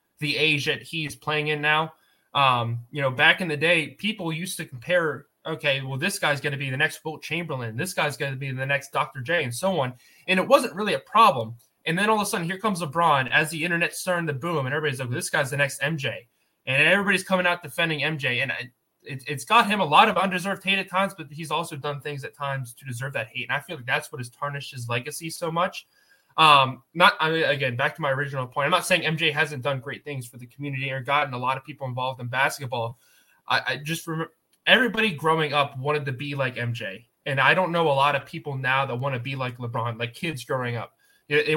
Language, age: English, 20-39